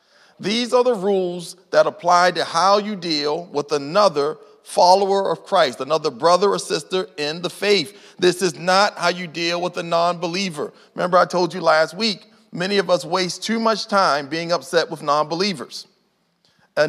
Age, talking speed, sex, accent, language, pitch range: 40-59, 175 wpm, male, American, English, 180-235 Hz